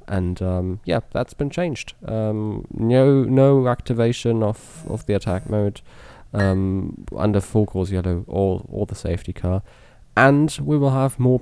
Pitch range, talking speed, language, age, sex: 95-120 Hz, 160 wpm, English, 20-39, male